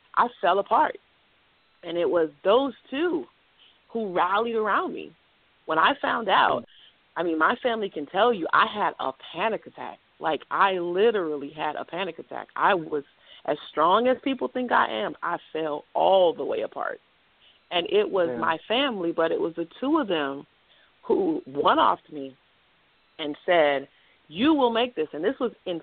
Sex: female